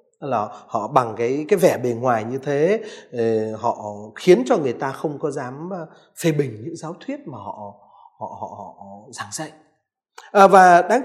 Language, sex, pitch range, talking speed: Vietnamese, male, 150-230 Hz, 195 wpm